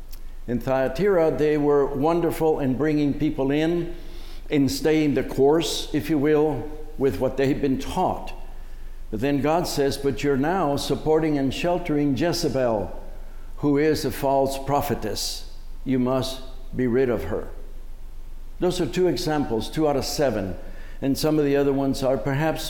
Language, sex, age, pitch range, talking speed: English, male, 60-79, 125-155 Hz, 160 wpm